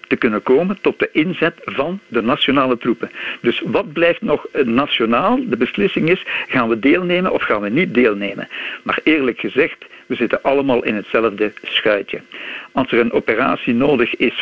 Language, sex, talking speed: Dutch, male, 170 wpm